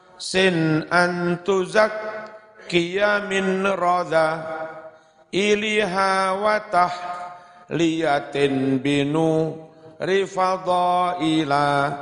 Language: Indonesian